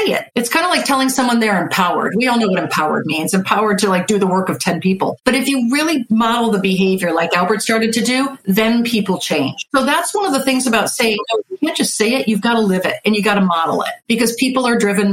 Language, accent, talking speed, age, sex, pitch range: English, American, 265 wpm, 50-69, female, 205-265 Hz